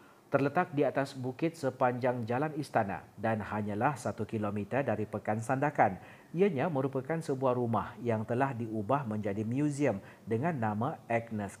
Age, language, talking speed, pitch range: 40-59, Malay, 135 wpm, 110-150 Hz